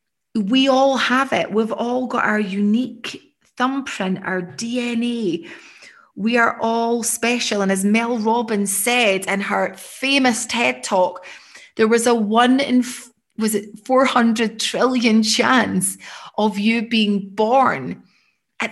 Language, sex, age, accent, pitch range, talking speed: English, female, 30-49, British, 210-260 Hz, 135 wpm